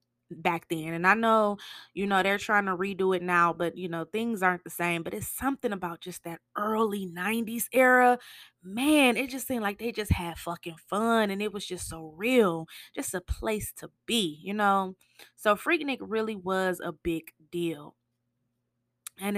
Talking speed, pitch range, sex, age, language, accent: 190 wpm, 185-255 Hz, female, 20-39, English, American